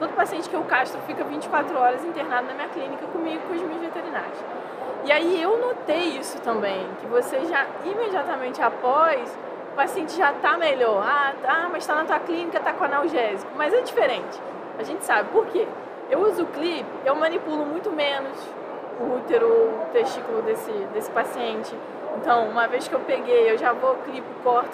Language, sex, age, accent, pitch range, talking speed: Portuguese, female, 20-39, Brazilian, 260-360 Hz, 185 wpm